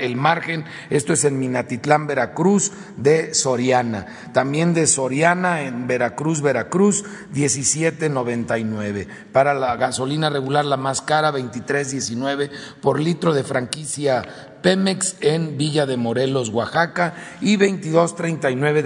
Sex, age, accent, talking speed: male, 40-59, Mexican, 115 wpm